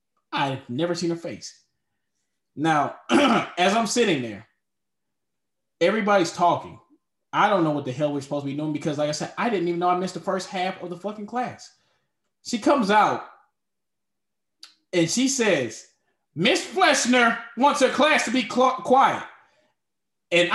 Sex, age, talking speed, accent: male, 20-39, 160 wpm, American